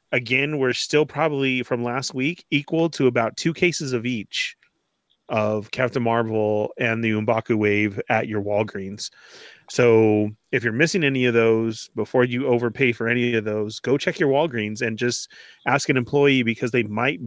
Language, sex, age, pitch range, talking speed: English, male, 30-49, 110-125 Hz, 175 wpm